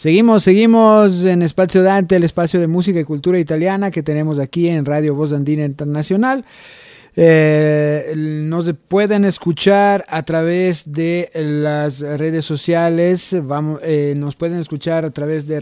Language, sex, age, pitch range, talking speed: Spanish, male, 30-49, 145-180 Hz, 140 wpm